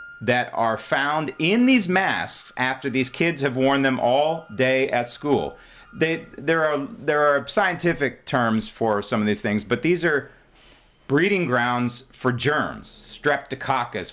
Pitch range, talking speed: 120-160 Hz, 155 wpm